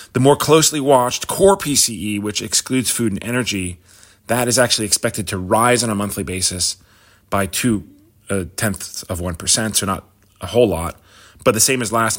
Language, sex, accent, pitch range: English, male, American, 95-115 Hz